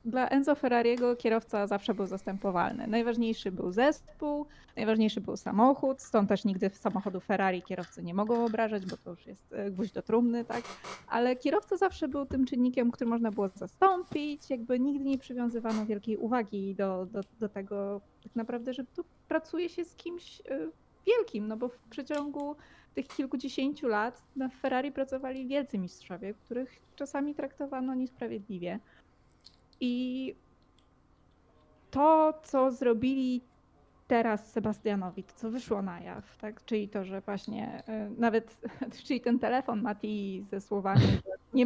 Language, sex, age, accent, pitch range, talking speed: Polish, female, 20-39, native, 210-265 Hz, 145 wpm